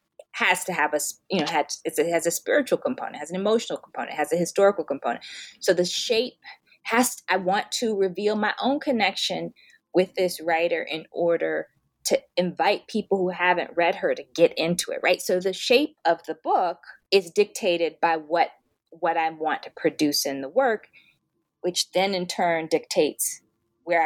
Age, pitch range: 20-39, 165-255 Hz